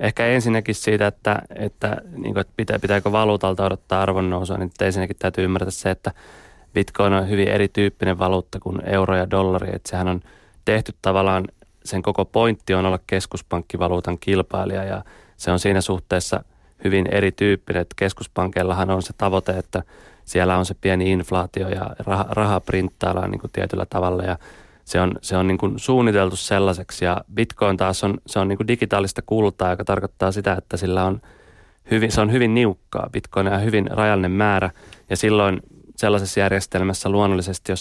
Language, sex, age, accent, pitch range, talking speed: Finnish, male, 30-49, native, 95-105 Hz, 165 wpm